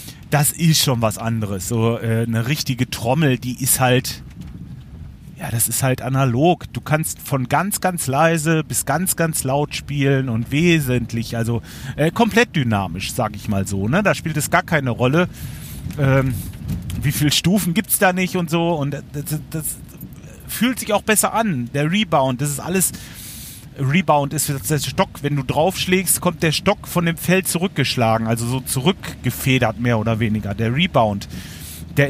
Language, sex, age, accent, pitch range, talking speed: German, male, 40-59, German, 125-165 Hz, 170 wpm